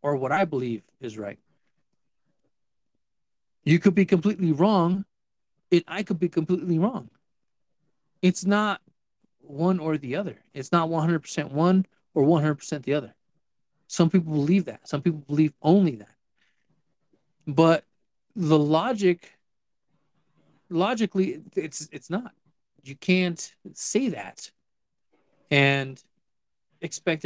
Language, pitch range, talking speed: English, 140-180 Hz, 115 wpm